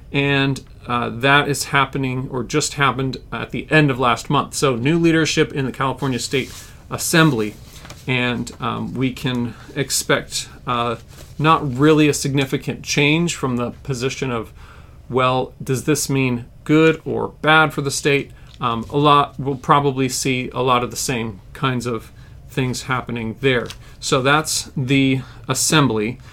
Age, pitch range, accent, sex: 40-59, 125-150 Hz, American, male